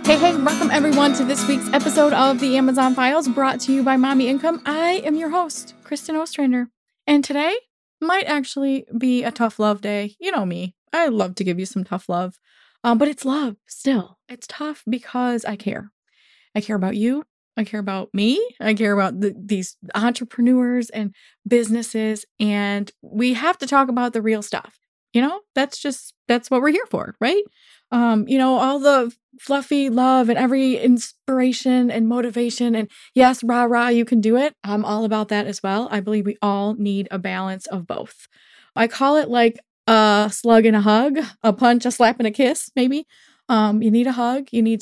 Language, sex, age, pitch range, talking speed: English, female, 20-39, 210-265 Hz, 200 wpm